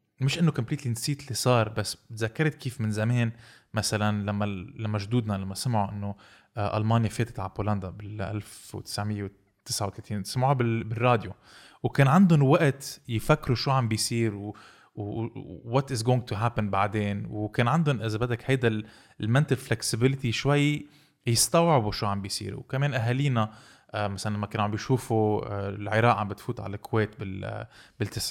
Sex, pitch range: male, 105-130 Hz